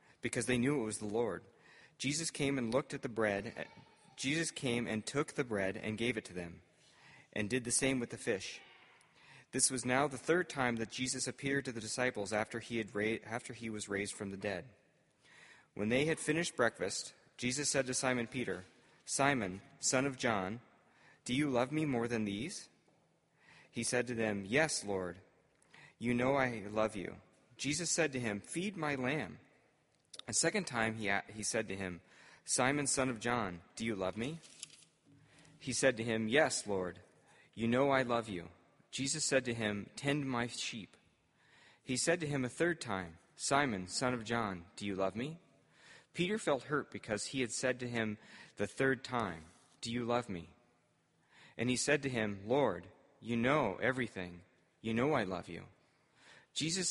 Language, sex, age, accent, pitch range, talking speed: English, male, 40-59, American, 105-135 Hz, 180 wpm